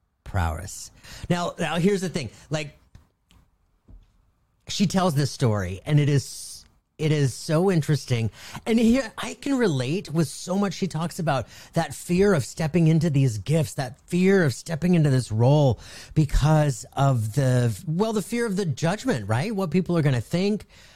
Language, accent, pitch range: English, American, 110-170 Hz